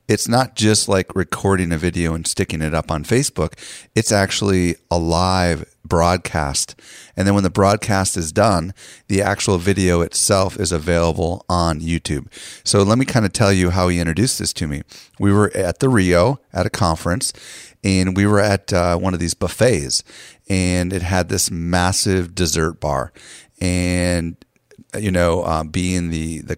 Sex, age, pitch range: male, 40-59, 85-100 Hz